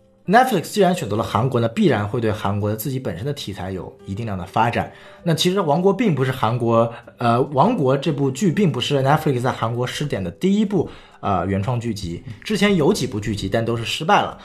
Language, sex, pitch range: Chinese, male, 115-180 Hz